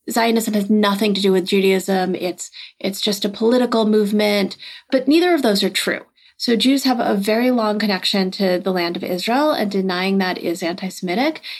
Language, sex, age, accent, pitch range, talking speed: English, female, 30-49, American, 195-240 Hz, 185 wpm